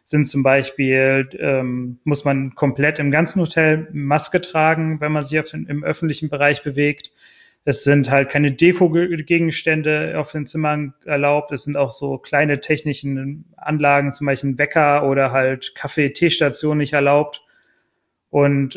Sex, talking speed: male, 145 wpm